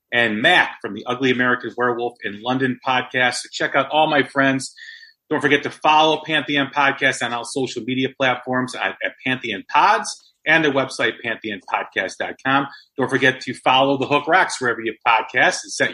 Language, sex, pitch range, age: English, male, 125-155 Hz, 40-59